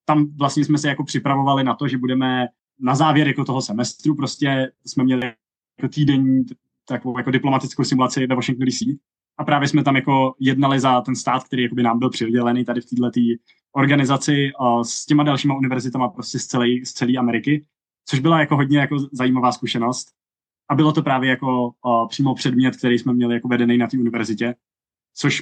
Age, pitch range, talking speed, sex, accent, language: 20-39, 125-140 Hz, 175 wpm, male, native, Czech